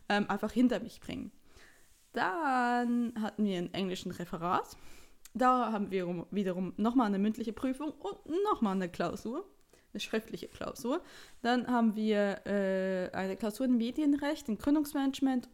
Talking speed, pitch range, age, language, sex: 145 wpm, 205-280 Hz, 20-39, German, female